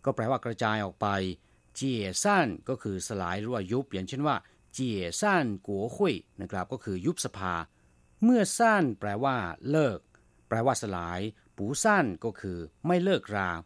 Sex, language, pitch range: male, Thai, 95-135 Hz